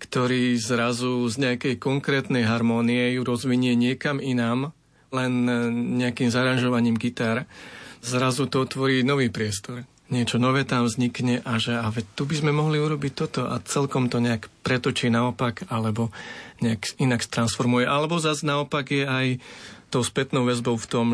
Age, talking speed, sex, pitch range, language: 40-59, 150 wpm, male, 120-135 Hz, Slovak